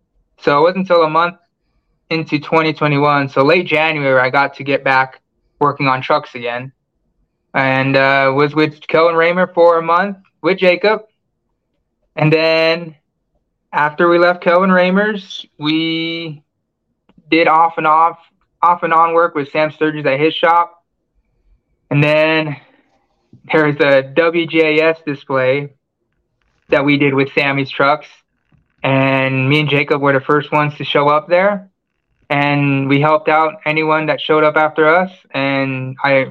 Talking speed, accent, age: 145 wpm, American, 20-39